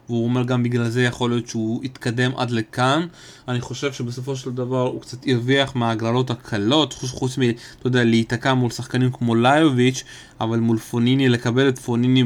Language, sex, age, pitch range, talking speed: Hebrew, male, 20-39, 115-135 Hz, 170 wpm